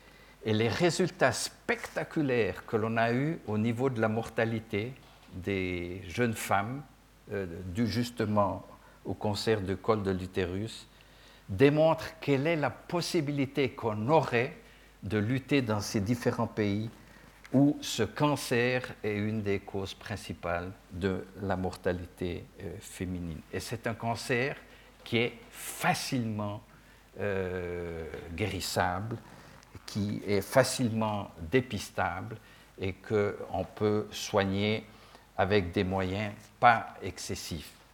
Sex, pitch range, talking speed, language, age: male, 95-120 Hz, 115 wpm, French, 60-79